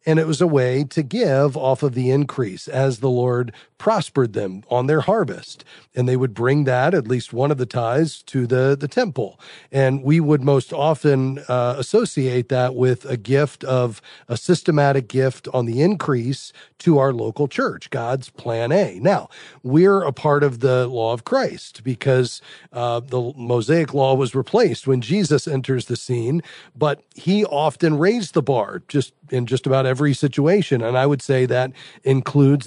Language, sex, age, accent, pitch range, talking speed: English, male, 40-59, American, 130-160 Hz, 180 wpm